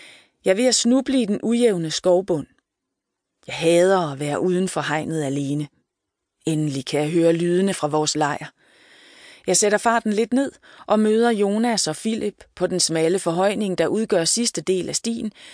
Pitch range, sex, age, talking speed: 155-215 Hz, female, 30-49, 165 wpm